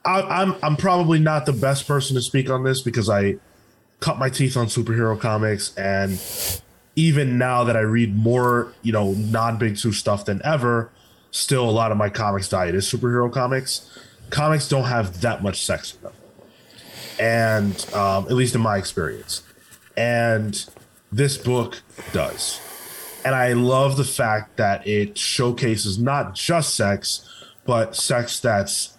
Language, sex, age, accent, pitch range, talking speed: English, male, 20-39, American, 100-125 Hz, 160 wpm